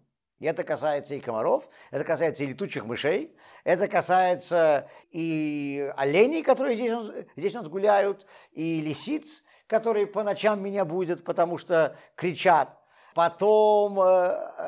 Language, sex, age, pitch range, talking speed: Russian, male, 50-69, 140-210 Hz, 125 wpm